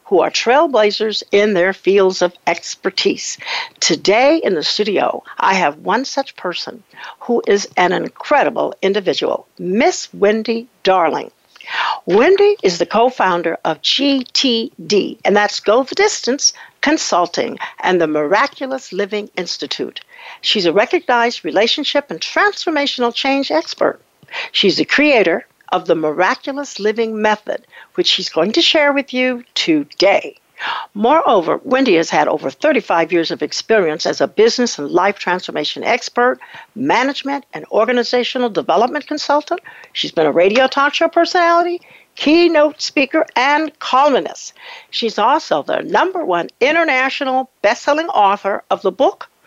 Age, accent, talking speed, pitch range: 60-79, American, 135 wpm, 195-295 Hz